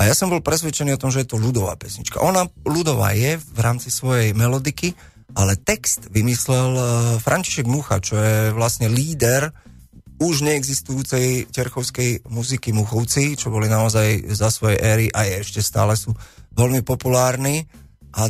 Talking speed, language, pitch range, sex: 155 wpm, Slovak, 110-135 Hz, male